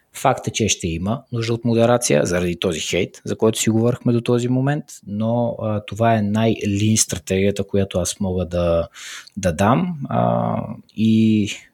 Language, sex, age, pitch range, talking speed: Bulgarian, male, 20-39, 90-115 Hz, 165 wpm